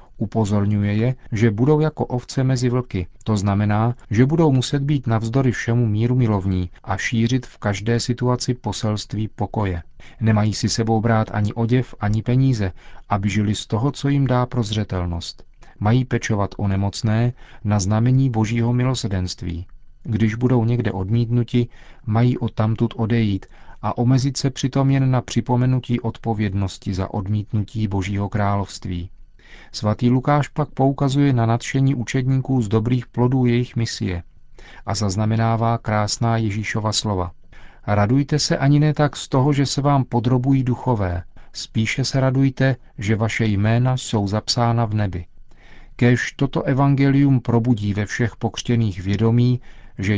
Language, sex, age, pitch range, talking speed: Czech, male, 40-59, 105-125 Hz, 140 wpm